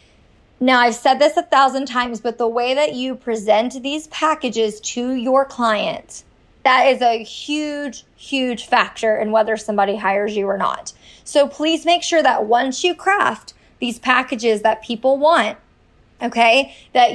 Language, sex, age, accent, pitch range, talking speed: English, female, 20-39, American, 220-265 Hz, 160 wpm